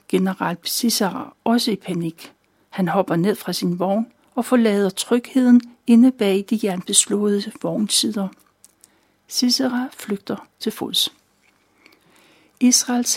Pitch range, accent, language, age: 190-235 Hz, native, Danish, 60-79